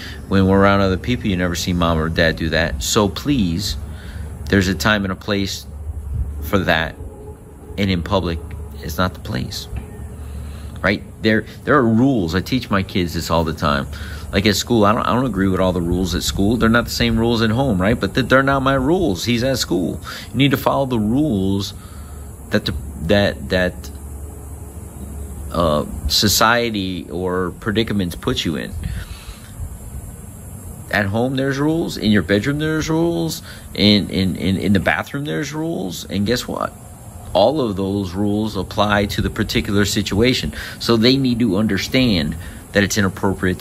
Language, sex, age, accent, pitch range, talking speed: English, male, 50-69, American, 85-110 Hz, 175 wpm